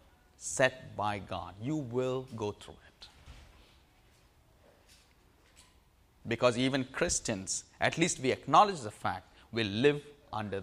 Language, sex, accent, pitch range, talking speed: English, male, Indian, 105-135 Hz, 115 wpm